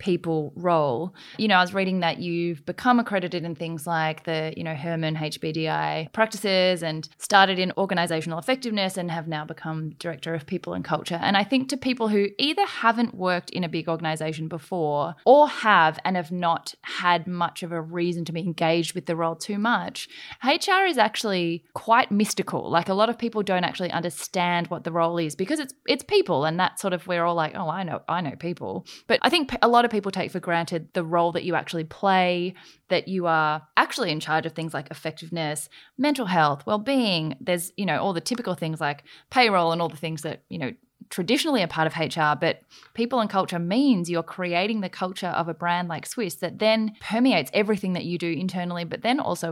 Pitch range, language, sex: 165-210 Hz, English, female